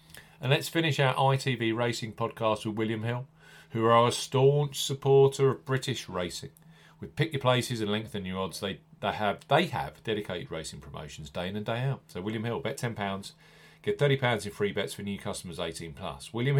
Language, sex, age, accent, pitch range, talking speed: English, male, 40-59, British, 105-140 Hz, 195 wpm